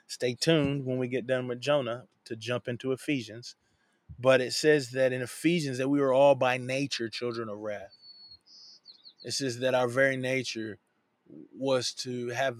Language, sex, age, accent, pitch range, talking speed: English, male, 20-39, American, 120-140 Hz, 170 wpm